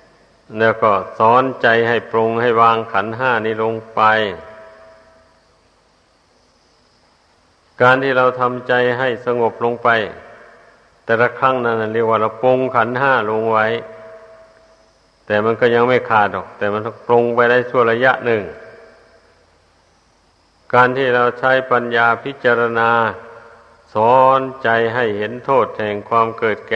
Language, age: Thai, 60-79